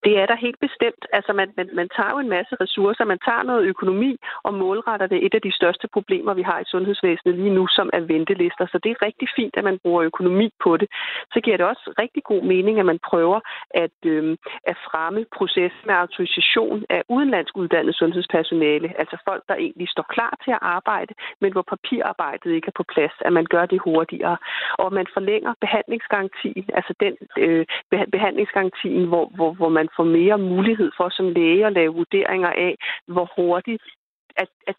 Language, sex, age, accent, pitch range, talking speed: Danish, female, 40-59, native, 175-220 Hz, 190 wpm